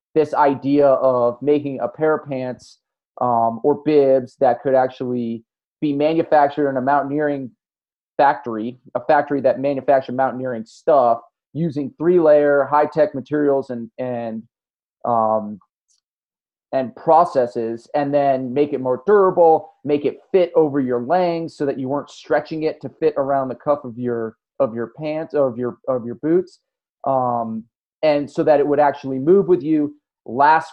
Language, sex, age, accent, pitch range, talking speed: English, male, 30-49, American, 130-155 Hz, 150 wpm